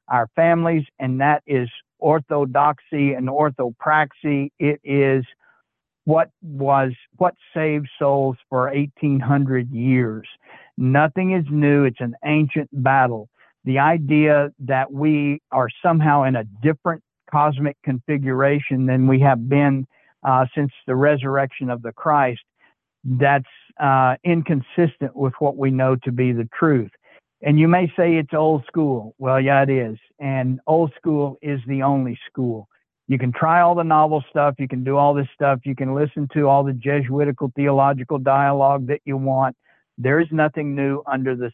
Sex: male